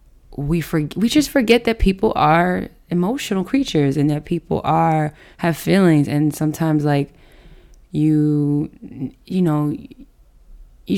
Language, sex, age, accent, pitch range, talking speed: English, female, 20-39, American, 150-180 Hz, 125 wpm